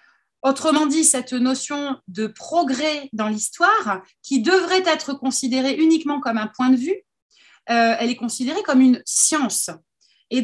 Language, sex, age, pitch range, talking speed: French, female, 30-49, 230-305 Hz, 150 wpm